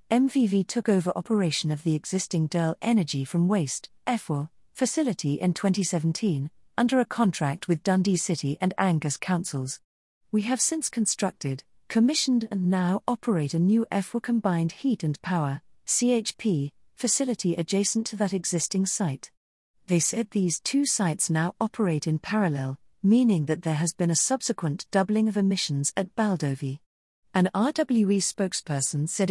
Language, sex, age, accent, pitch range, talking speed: English, female, 40-59, British, 155-215 Hz, 145 wpm